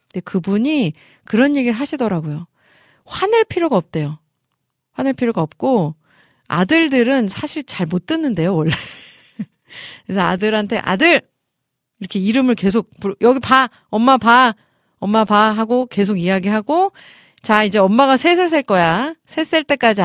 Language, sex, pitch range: Korean, female, 170-245 Hz